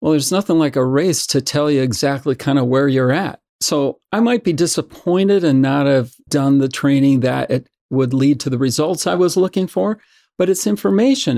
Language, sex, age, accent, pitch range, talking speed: English, male, 50-69, American, 130-175 Hz, 210 wpm